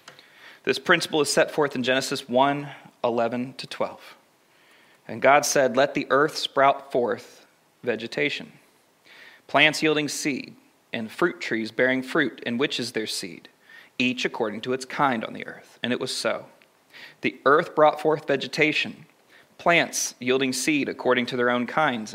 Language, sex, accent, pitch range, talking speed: English, male, American, 125-150 Hz, 155 wpm